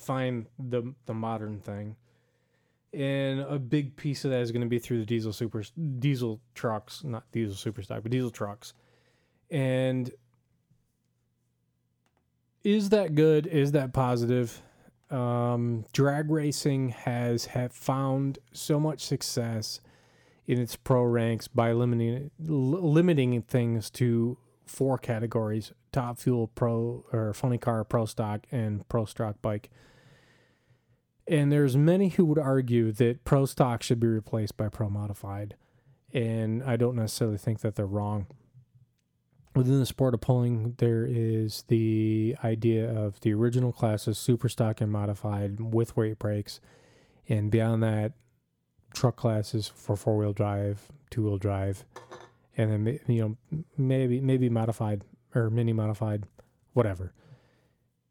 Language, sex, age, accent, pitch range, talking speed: English, male, 30-49, American, 110-130 Hz, 135 wpm